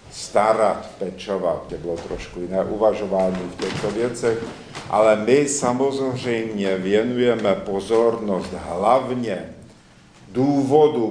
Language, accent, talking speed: Czech, native, 90 wpm